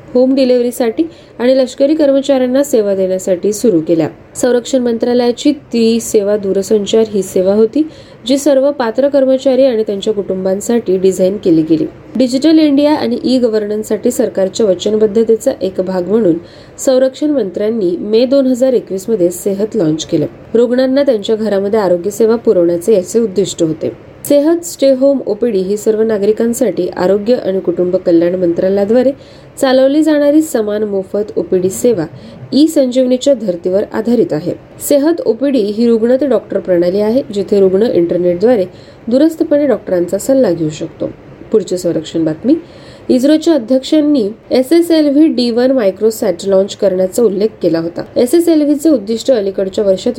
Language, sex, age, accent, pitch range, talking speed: Marathi, female, 20-39, native, 190-265 Hz, 125 wpm